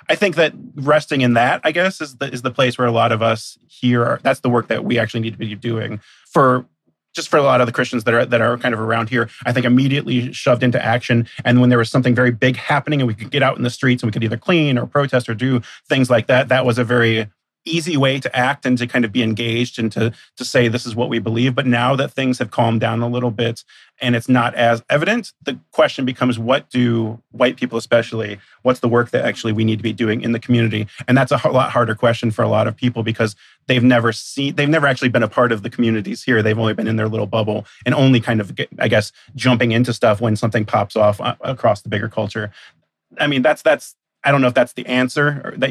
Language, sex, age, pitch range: English, male, 30-49, 115-130 Hz